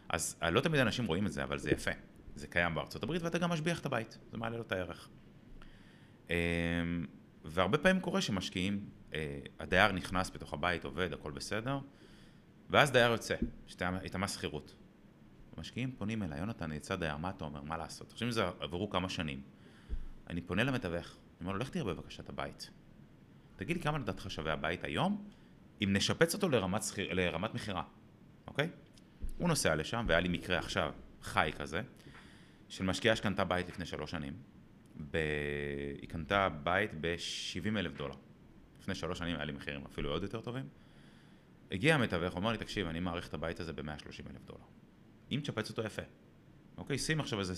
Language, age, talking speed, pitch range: Hebrew, 30-49, 170 wpm, 80-115 Hz